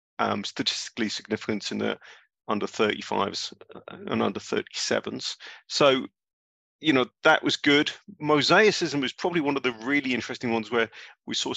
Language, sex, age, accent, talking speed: English, male, 40-59, British, 145 wpm